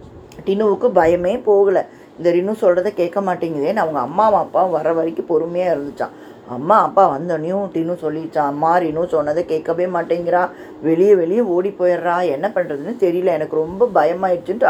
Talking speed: 145 wpm